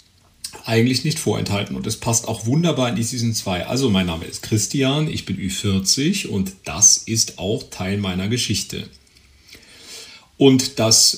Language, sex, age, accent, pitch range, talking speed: German, male, 40-59, German, 100-135 Hz, 155 wpm